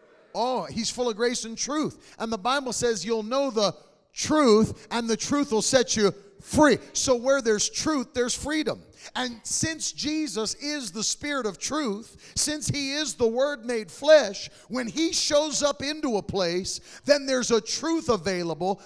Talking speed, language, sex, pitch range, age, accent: 175 wpm, English, male, 220-275 Hz, 40-59, American